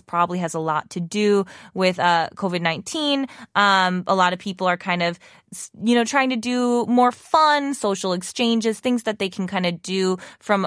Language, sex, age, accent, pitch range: Korean, female, 20-39, American, 175-230 Hz